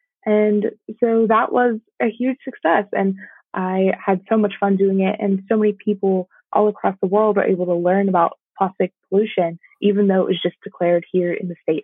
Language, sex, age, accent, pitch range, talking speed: English, female, 20-39, American, 185-210 Hz, 205 wpm